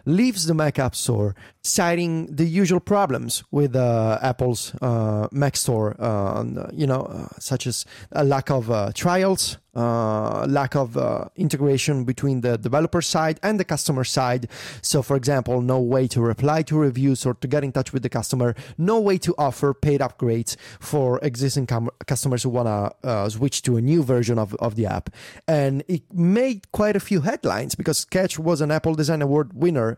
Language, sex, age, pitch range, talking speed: English, male, 30-49, 120-155 Hz, 185 wpm